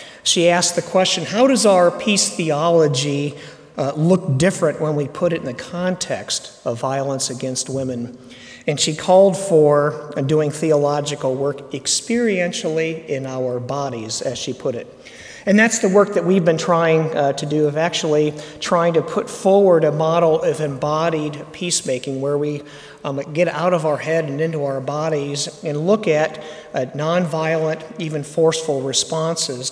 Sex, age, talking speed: male, 50-69, 160 wpm